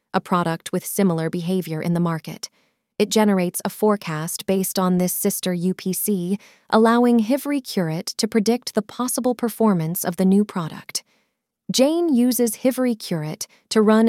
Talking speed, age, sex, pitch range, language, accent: 150 wpm, 30-49, female, 180-225 Hz, English, American